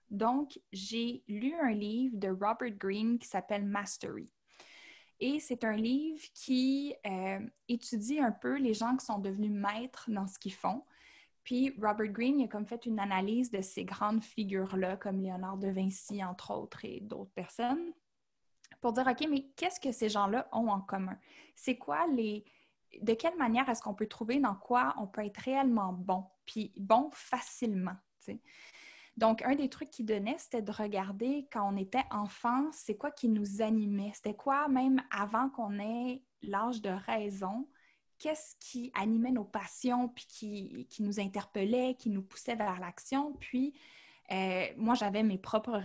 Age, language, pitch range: 10-29, French, 200-255 Hz